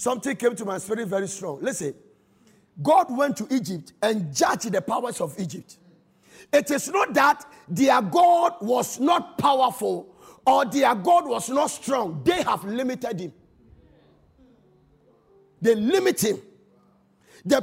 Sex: male